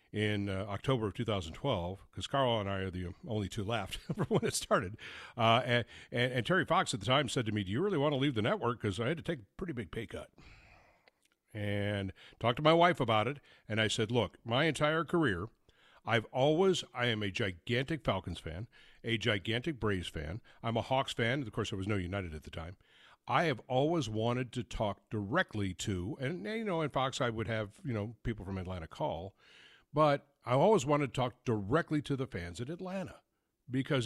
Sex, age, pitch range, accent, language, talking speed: male, 60-79, 110-150 Hz, American, English, 215 wpm